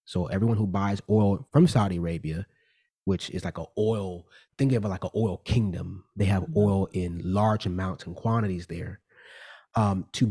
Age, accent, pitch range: 30-49, American, 100-135 Hz